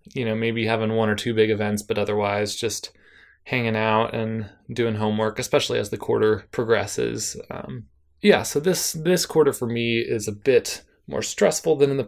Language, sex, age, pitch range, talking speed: English, male, 20-39, 110-130 Hz, 190 wpm